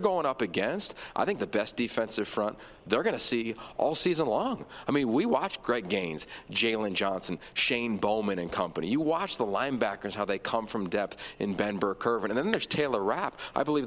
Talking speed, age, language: 210 wpm, 40-59, English